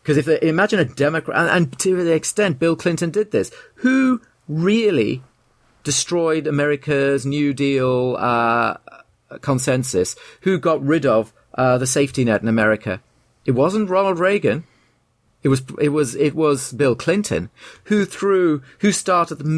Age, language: 40-59, English